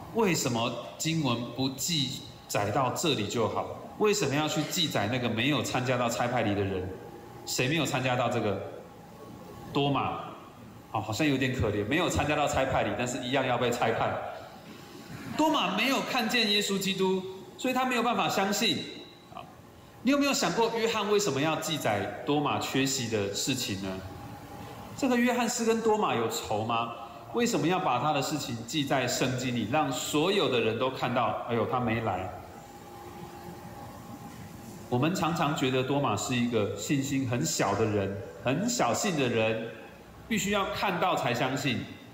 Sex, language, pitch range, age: male, Chinese, 115-190 Hz, 30-49